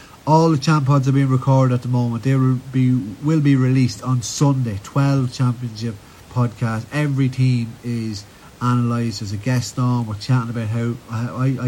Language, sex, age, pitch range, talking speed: English, male, 30-49, 110-130 Hz, 175 wpm